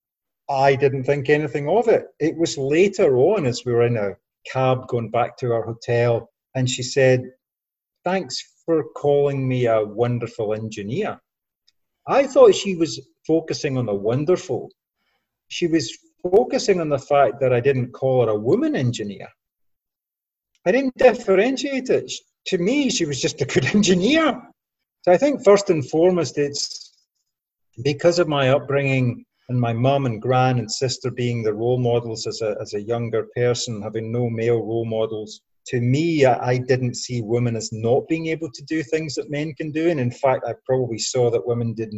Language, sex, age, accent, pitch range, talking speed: English, male, 40-59, British, 120-165 Hz, 175 wpm